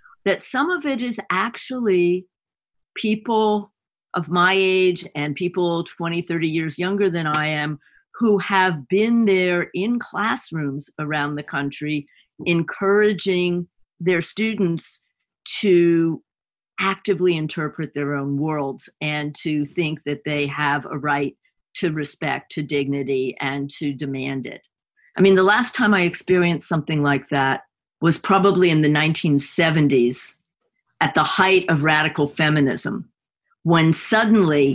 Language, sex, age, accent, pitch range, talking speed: English, female, 50-69, American, 145-185 Hz, 130 wpm